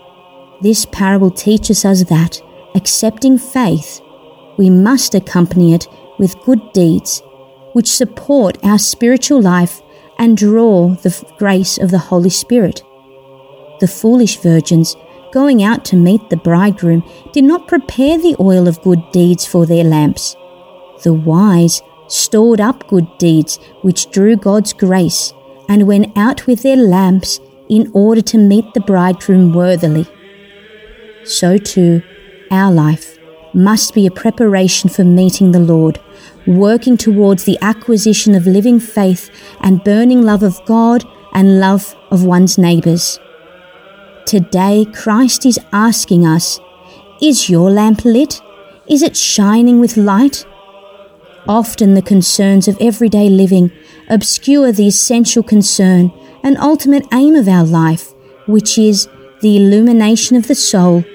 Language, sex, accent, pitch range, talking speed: English, female, Australian, 180-220 Hz, 135 wpm